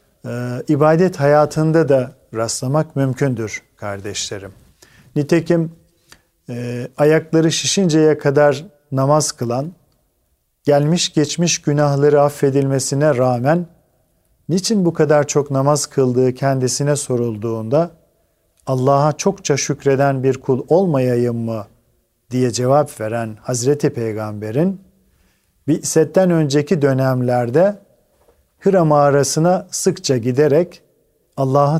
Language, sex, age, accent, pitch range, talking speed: Turkish, male, 50-69, native, 130-160 Hz, 85 wpm